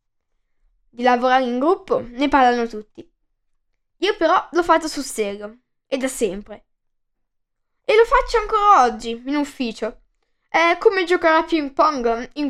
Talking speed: 145 wpm